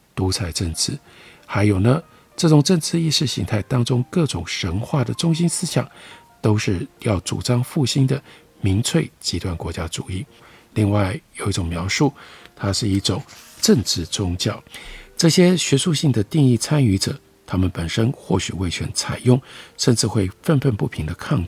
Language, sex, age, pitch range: Chinese, male, 50-69, 95-135 Hz